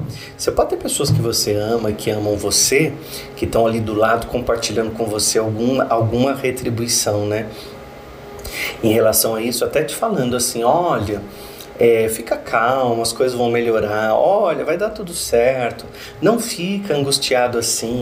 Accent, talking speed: Brazilian, 155 wpm